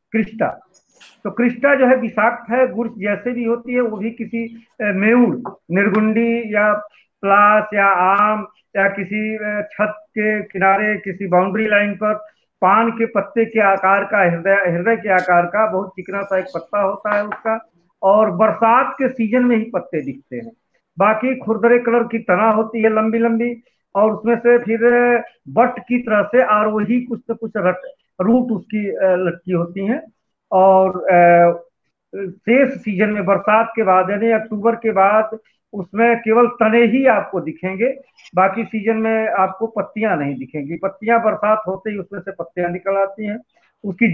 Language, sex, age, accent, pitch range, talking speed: Hindi, male, 50-69, native, 195-230 Hz, 165 wpm